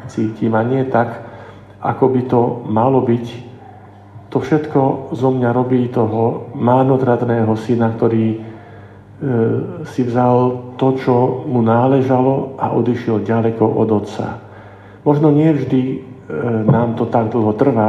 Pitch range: 115-130 Hz